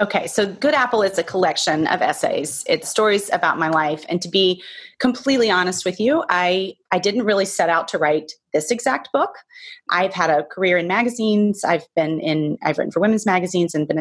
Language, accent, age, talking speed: English, American, 30-49, 205 wpm